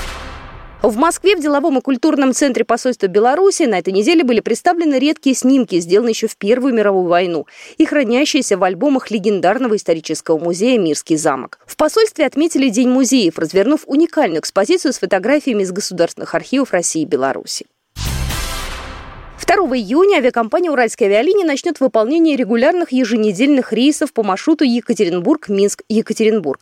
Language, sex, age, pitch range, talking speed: Russian, female, 20-39, 195-300 Hz, 135 wpm